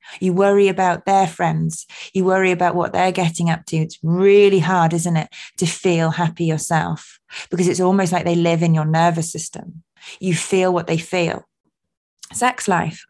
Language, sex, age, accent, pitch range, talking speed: English, female, 20-39, British, 170-195 Hz, 180 wpm